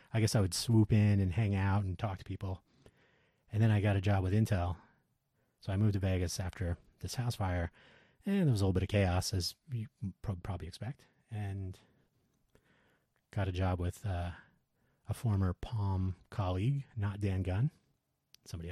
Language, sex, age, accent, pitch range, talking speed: English, male, 30-49, American, 95-115 Hz, 180 wpm